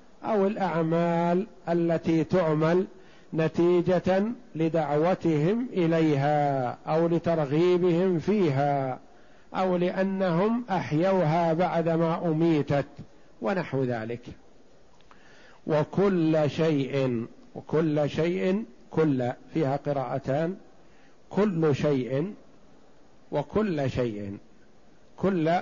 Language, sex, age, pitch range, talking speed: Arabic, male, 50-69, 145-180 Hz, 70 wpm